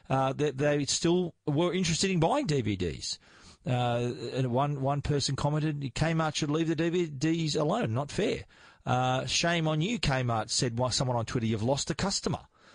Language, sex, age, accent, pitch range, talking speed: English, male, 40-59, Australian, 125-155 Hz, 175 wpm